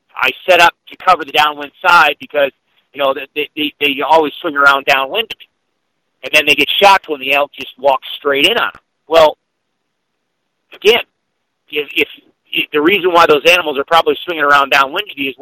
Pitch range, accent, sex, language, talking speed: 145-225 Hz, American, male, English, 185 wpm